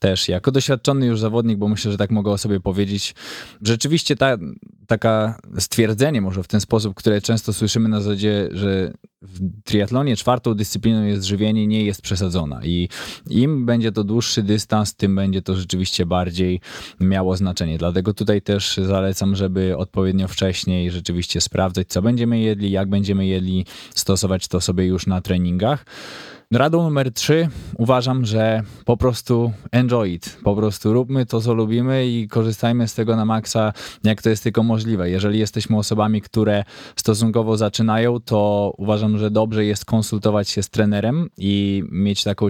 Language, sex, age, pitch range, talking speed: Polish, male, 20-39, 95-115 Hz, 160 wpm